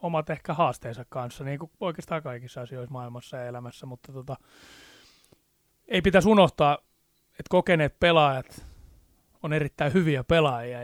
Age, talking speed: 30-49, 135 wpm